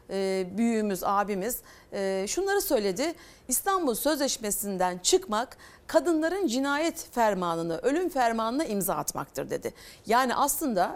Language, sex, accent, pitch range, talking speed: Turkish, female, native, 190-290 Hz, 105 wpm